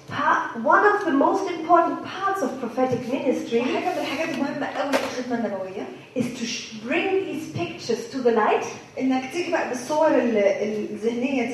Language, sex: German, female